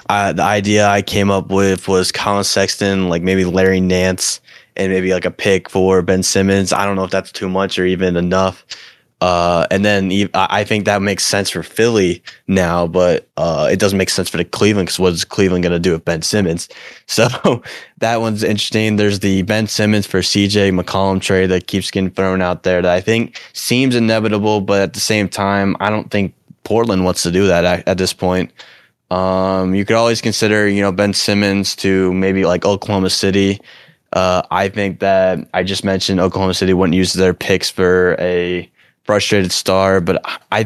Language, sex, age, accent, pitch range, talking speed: English, male, 20-39, American, 90-100 Hz, 195 wpm